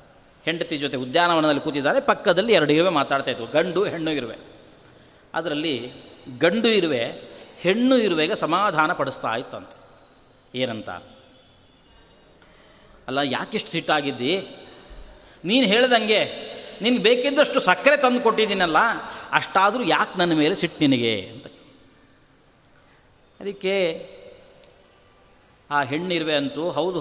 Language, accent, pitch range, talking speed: Kannada, native, 140-210 Hz, 95 wpm